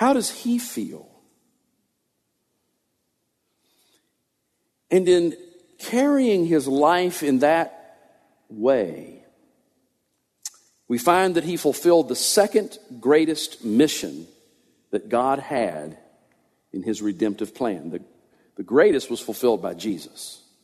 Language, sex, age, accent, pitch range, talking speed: English, male, 50-69, American, 125-160 Hz, 100 wpm